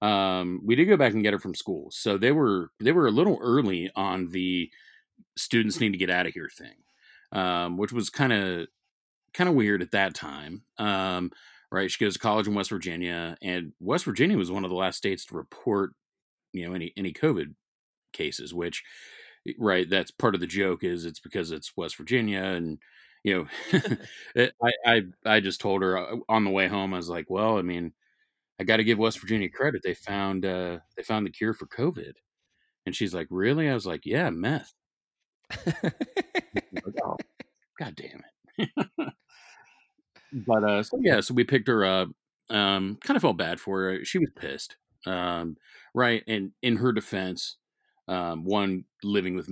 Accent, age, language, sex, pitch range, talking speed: American, 40-59, English, male, 90-115 Hz, 185 wpm